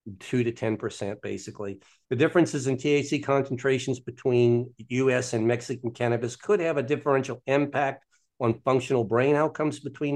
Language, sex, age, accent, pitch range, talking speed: English, male, 50-69, American, 120-145 Hz, 140 wpm